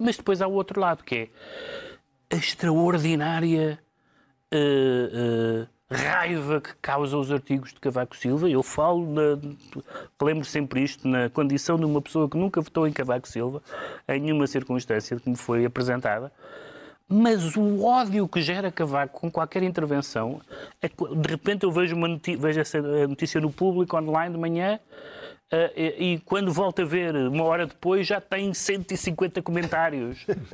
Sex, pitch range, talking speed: male, 125-175 Hz, 165 wpm